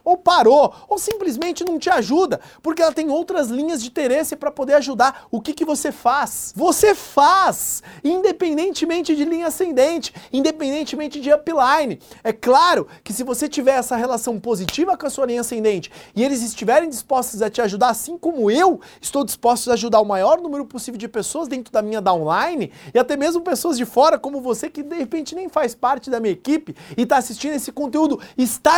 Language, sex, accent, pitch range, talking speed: Portuguese, male, Brazilian, 225-300 Hz, 190 wpm